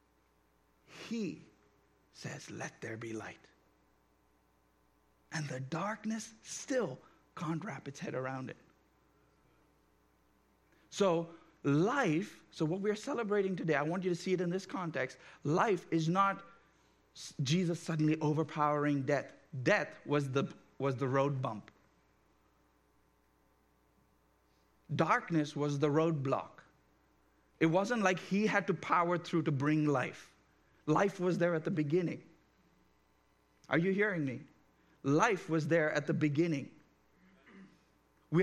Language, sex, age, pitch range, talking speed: English, male, 50-69, 110-165 Hz, 125 wpm